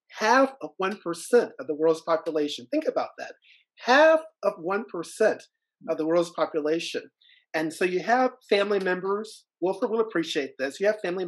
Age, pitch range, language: 40-59, 150-215 Hz, English